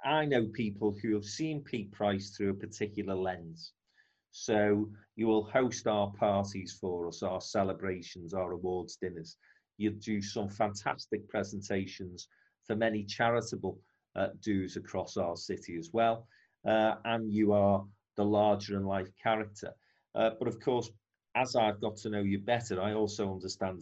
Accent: British